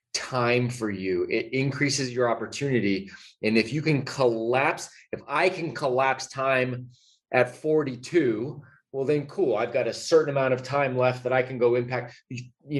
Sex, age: male, 30-49